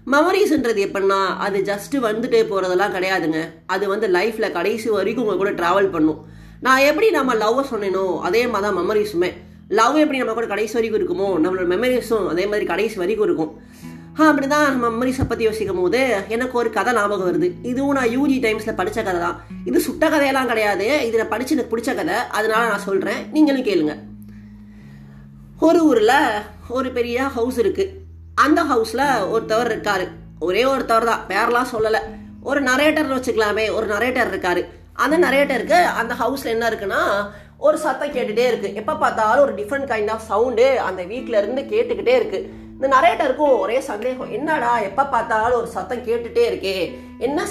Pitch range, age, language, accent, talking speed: 200-280 Hz, 30-49, Tamil, native, 160 wpm